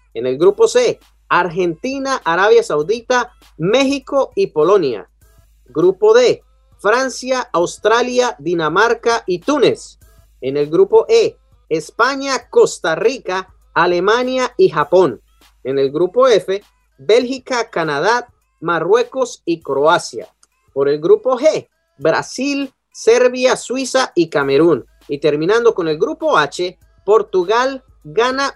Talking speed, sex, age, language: 110 wpm, male, 30-49, Spanish